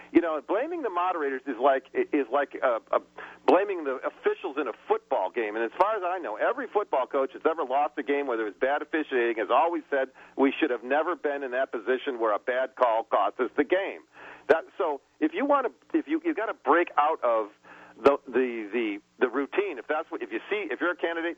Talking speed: 240 wpm